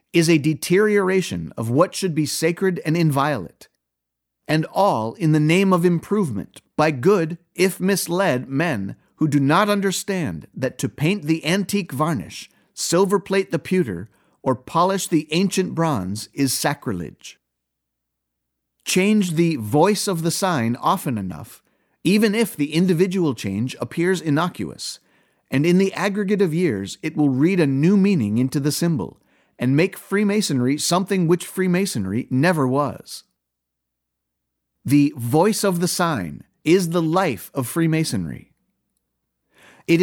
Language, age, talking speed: English, 50-69, 140 wpm